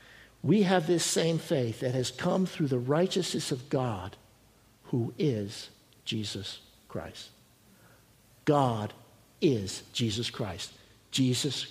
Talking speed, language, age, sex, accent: 115 wpm, English, 60-79, male, American